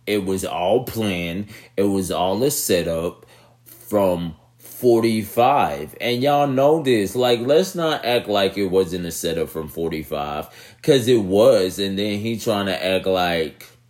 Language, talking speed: English, 155 wpm